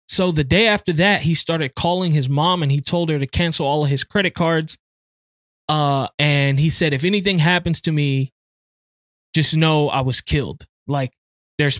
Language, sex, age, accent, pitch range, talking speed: English, male, 20-39, American, 130-165 Hz, 190 wpm